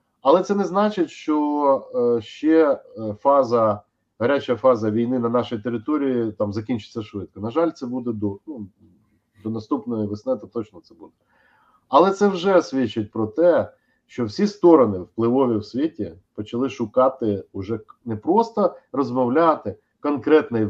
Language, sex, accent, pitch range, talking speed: Ukrainian, male, native, 110-160 Hz, 140 wpm